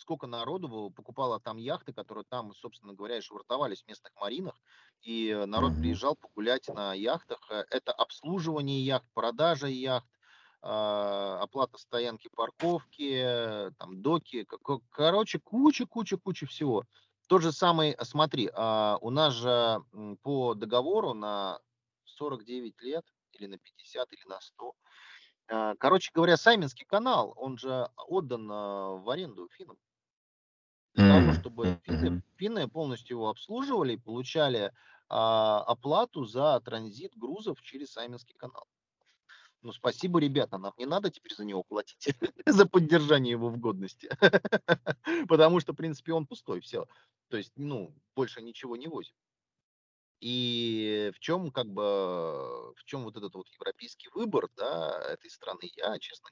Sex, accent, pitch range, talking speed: male, native, 110-175 Hz, 135 wpm